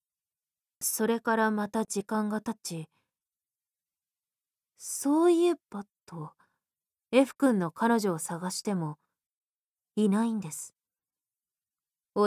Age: 20-39